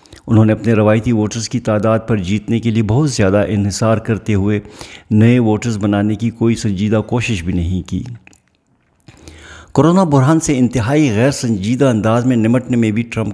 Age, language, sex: 60-79, Urdu, male